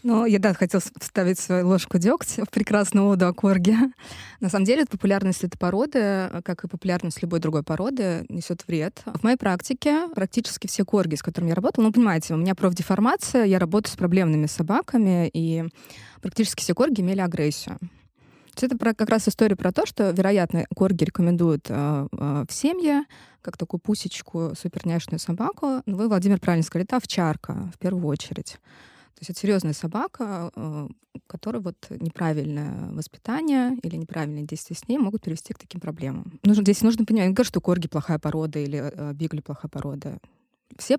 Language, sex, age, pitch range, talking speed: Russian, female, 20-39, 165-215 Hz, 170 wpm